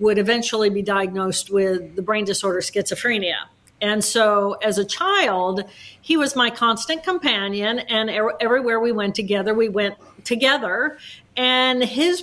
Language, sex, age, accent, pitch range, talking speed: English, female, 50-69, American, 210-255 Hz, 145 wpm